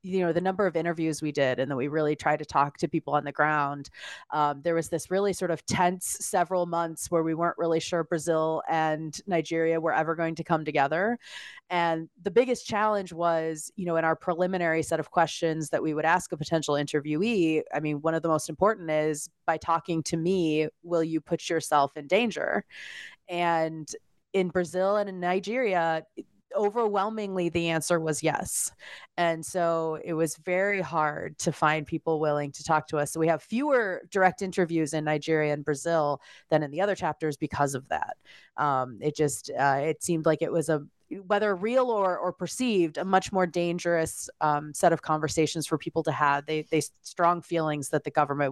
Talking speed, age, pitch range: 195 wpm, 30-49, 155-185 Hz